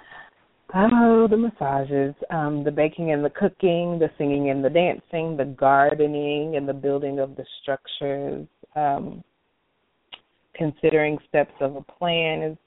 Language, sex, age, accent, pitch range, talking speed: English, female, 20-39, American, 140-165 Hz, 135 wpm